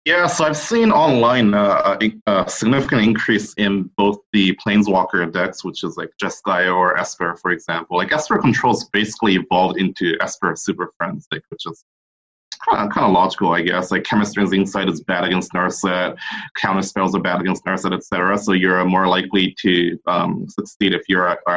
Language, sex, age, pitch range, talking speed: English, male, 30-49, 95-115 Hz, 180 wpm